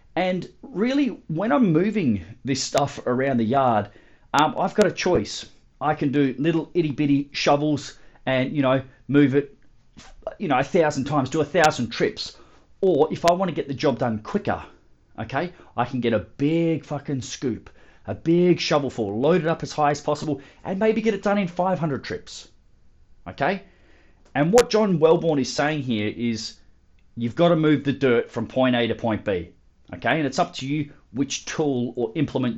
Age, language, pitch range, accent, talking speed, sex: 30-49, English, 130-165 Hz, Australian, 190 wpm, male